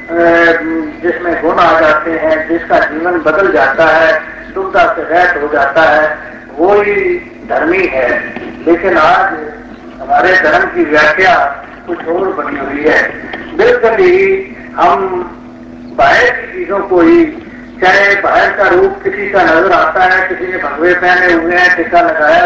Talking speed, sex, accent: 140 wpm, male, native